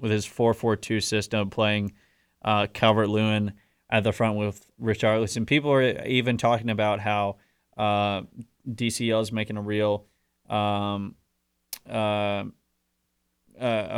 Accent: American